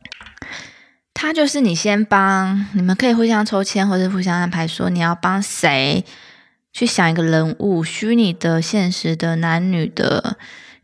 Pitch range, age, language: 170-220 Hz, 20-39, Chinese